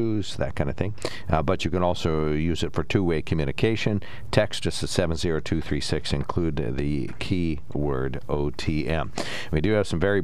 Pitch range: 75-100 Hz